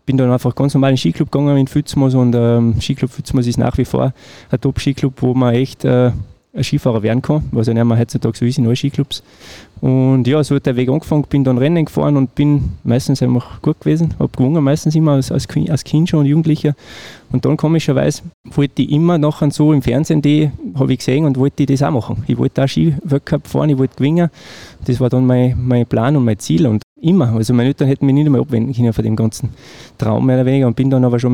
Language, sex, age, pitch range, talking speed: German, male, 20-39, 120-140 Hz, 245 wpm